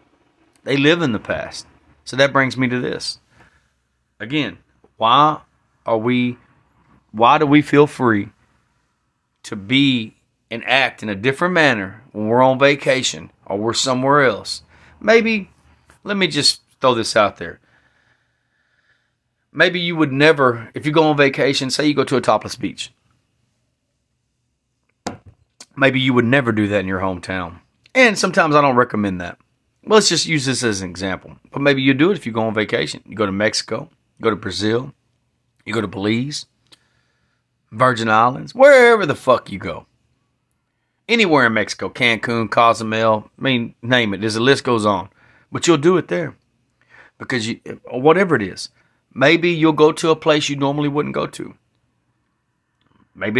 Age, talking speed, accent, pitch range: 30-49, 165 wpm, American, 110-140 Hz